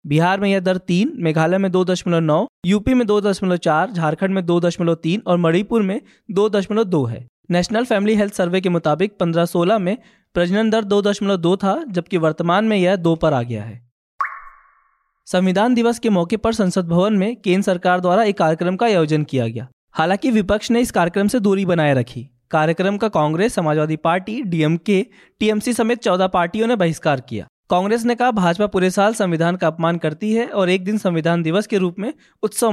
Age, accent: 20-39, native